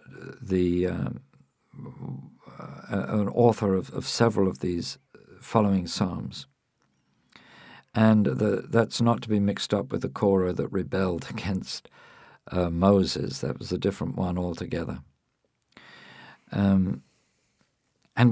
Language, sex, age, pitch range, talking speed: English, male, 50-69, 95-115 Hz, 110 wpm